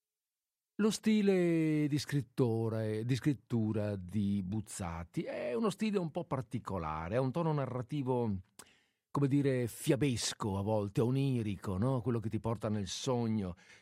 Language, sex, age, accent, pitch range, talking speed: Italian, male, 50-69, native, 100-145 Hz, 135 wpm